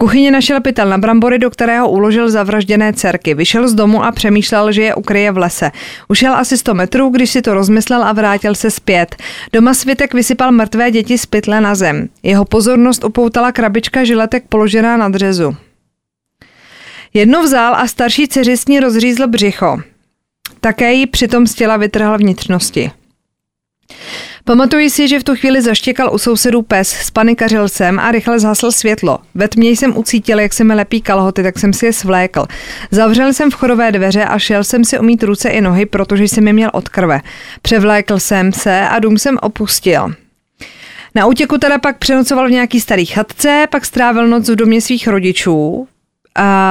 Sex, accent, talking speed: female, native, 175 wpm